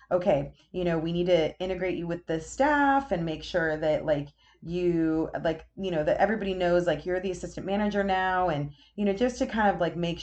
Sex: female